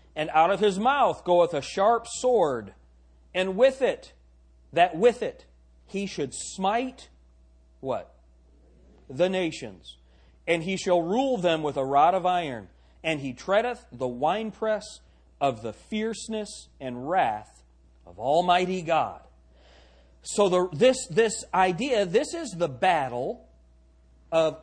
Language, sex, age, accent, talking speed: English, male, 40-59, American, 130 wpm